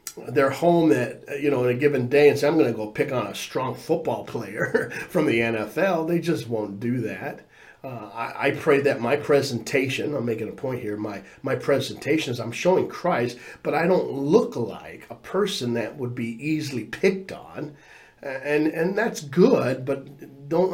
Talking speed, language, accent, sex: 195 wpm, English, American, male